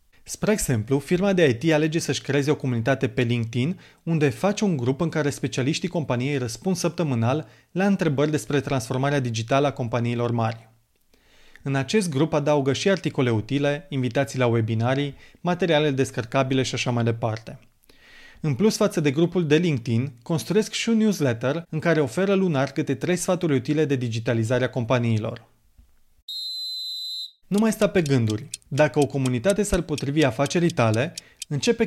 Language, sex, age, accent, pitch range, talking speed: Romanian, male, 30-49, native, 125-170 Hz, 155 wpm